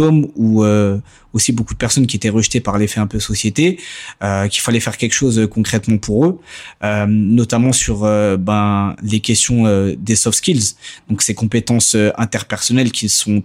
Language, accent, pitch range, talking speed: French, French, 105-120 Hz, 185 wpm